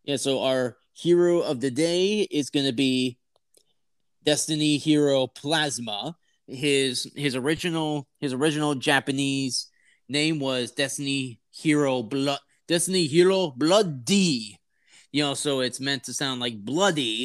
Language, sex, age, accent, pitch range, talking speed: English, male, 30-49, American, 130-165 Hz, 130 wpm